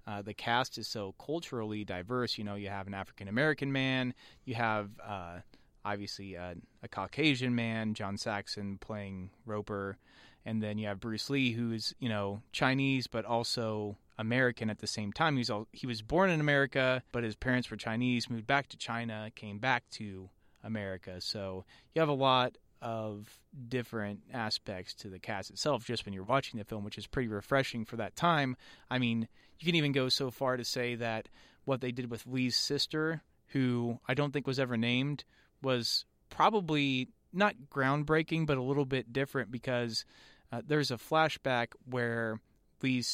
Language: English